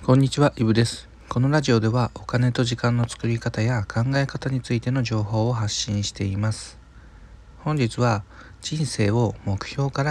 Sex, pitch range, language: male, 105-130 Hz, Japanese